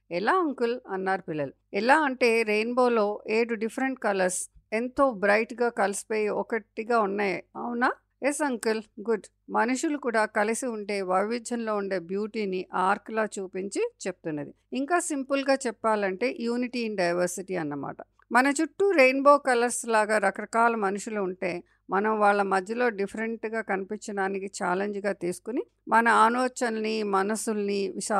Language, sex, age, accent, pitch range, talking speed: English, female, 50-69, Indian, 195-245 Hz, 95 wpm